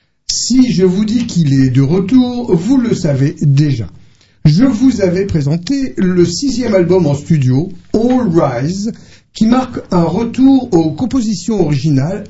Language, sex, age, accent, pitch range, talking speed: French, male, 60-79, French, 145-205 Hz, 145 wpm